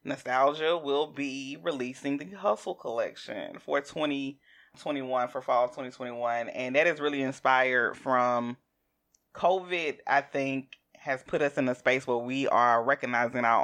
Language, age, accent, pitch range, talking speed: English, 30-49, American, 125-145 Hz, 140 wpm